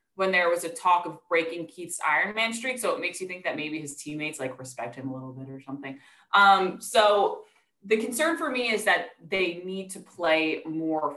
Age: 20-39